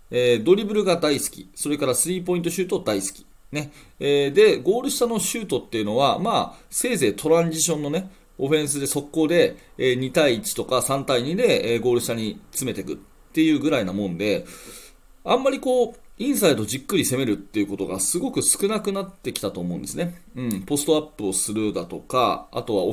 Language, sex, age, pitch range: Japanese, male, 30-49, 120-190 Hz